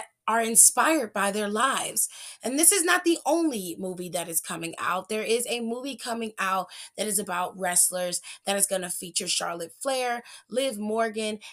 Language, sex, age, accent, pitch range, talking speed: English, female, 20-39, American, 180-230 Hz, 180 wpm